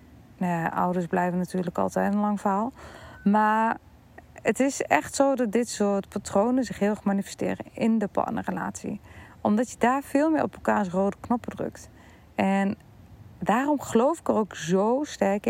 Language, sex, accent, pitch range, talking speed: Dutch, female, Dutch, 190-230 Hz, 165 wpm